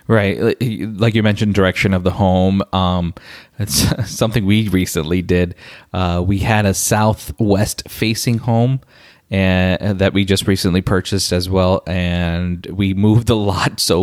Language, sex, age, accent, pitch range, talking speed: English, male, 20-39, American, 90-105 Hz, 145 wpm